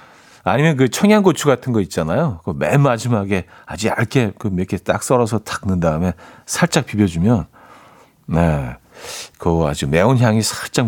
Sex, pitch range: male, 100-160 Hz